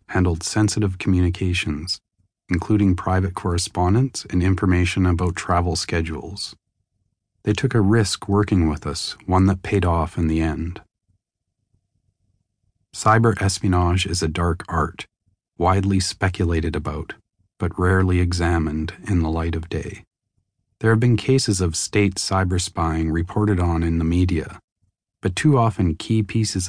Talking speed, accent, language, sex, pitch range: 135 wpm, American, English, male, 85-100 Hz